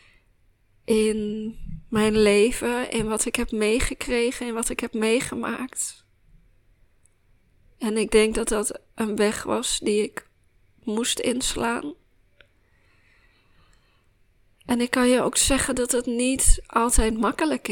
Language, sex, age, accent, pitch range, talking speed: Dutch, female, 20-39, Dutch, 150-245 Hz, 120 wpm